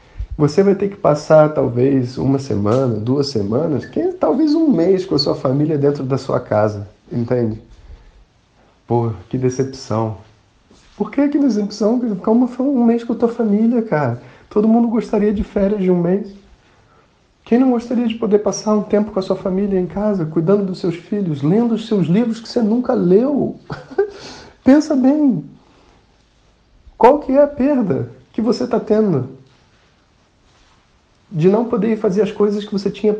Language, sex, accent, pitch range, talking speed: Portuguese, male, Brazilian, 145-230 Hz, 170 wpm